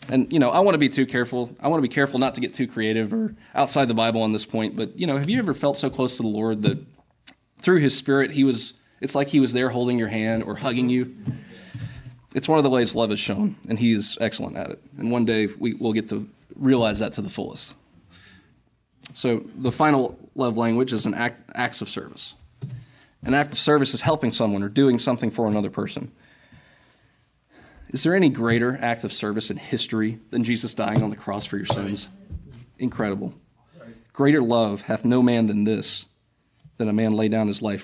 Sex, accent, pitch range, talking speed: male, American, 110-140 Hz, 215 wpm